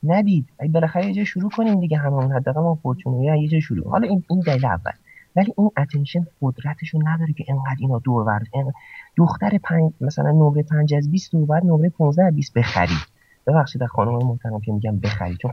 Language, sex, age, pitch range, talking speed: Persian, male, 30-49, 110-160 Hz, 155 wpm